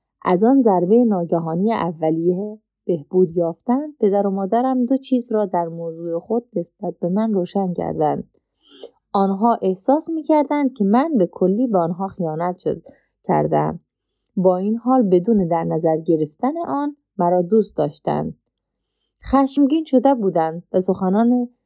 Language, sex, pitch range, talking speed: Persian, female, 175-245 Hz, 140 wpm